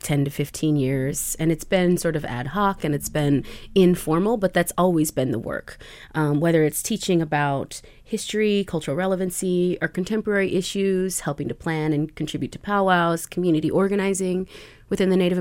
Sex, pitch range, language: female, 145-190 Hz, English